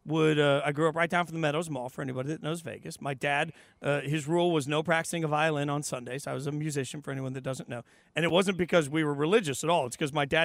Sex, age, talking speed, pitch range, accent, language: male, 40-59, 295 wpm, 150-190 Hz, American, English